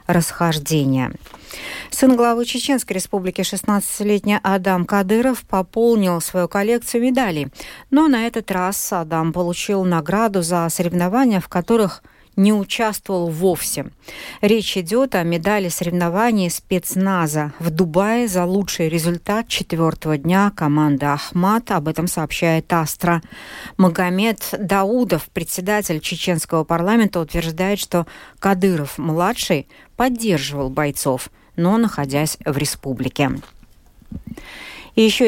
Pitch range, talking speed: 170-205 Hz, 100 wpm